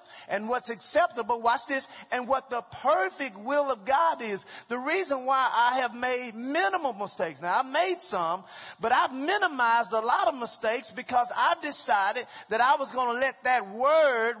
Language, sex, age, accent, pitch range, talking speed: English, male, 40-59, American, 160-240 Hz, 180 wpm